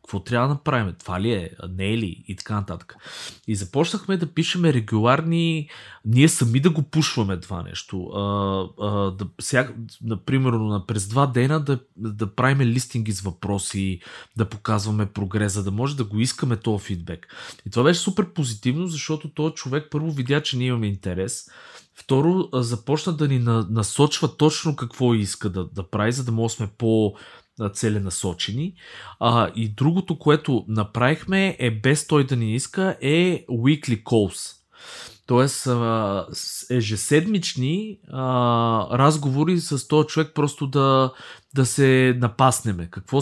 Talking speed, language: 145 wpm, Bulgarian